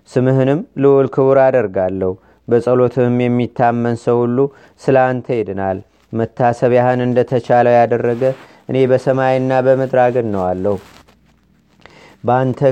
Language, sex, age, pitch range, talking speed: Amharic, male, 30-49, 115-130 Hz, 90 wpm